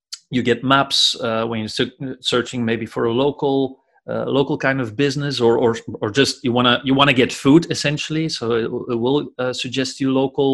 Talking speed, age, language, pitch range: 200 wpm, 30-49, English, 120-135 Hz